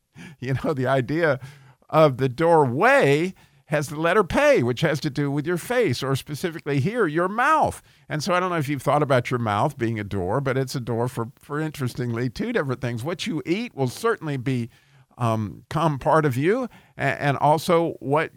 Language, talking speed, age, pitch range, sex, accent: English, 195 wpm, 50-69, 125-155 Hz, male, American